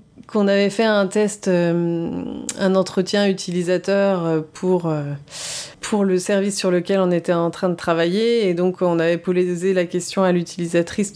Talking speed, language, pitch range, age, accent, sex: 165 wpm, French, 170-200 Hz, 30-49, French, female